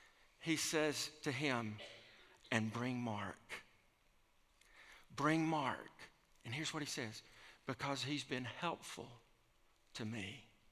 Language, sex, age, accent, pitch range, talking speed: English, male, 50-69, American, 125-175 Hz, 110 wpm